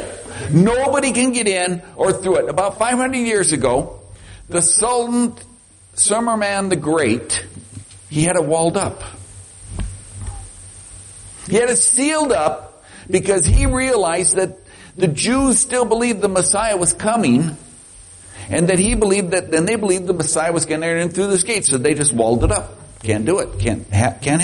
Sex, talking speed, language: male, 165 wpm, English